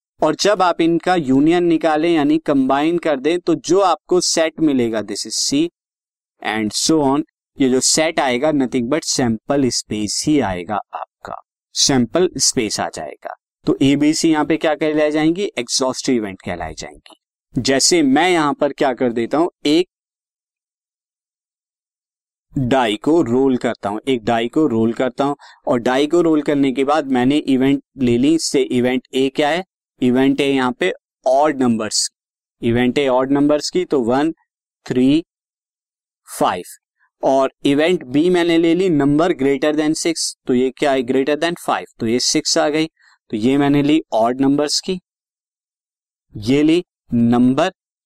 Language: Hindi